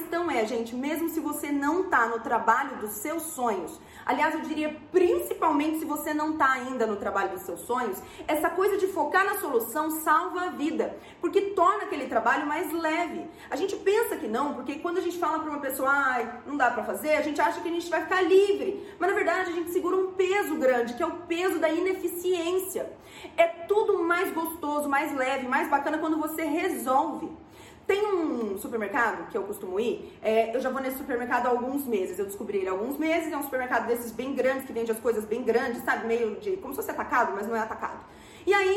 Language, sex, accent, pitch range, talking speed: Portuguese, female, Brazilian, 260-365 Hz, 220 wpm